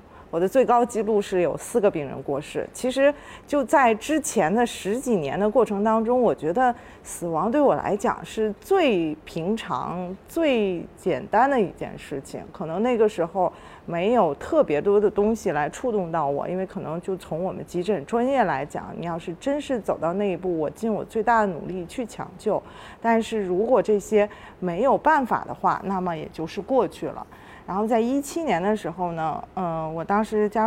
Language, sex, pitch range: Chinese, female, 180-235 Hz